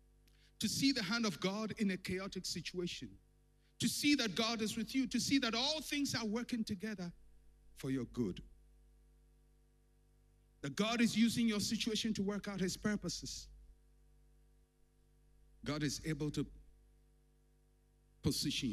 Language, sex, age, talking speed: English, male, 50-69, 140 wpm